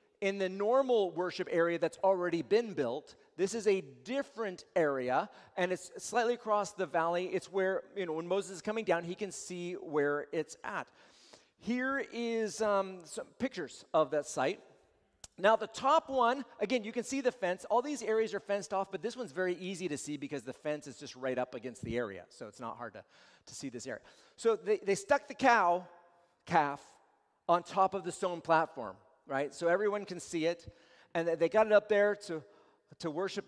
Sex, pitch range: male, 160-225 Hz